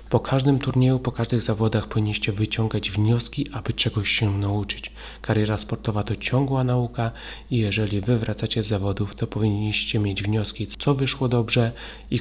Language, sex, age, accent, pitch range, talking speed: Polish, male, 30-49, native, 105-120 Hz, 150 wpm